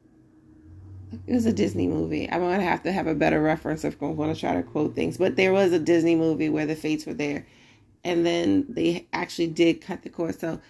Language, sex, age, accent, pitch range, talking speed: English, female, 30-49, American, 145-170 Hz, 240 wpm